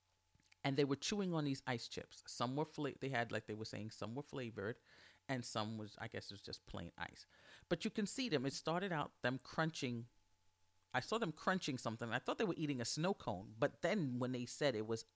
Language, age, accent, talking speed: English, 40-59, American, 240 wpm